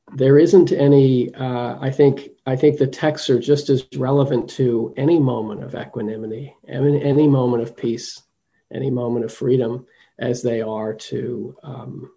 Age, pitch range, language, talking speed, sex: 40-59, 120-145 Hz, English, 165 wpm, male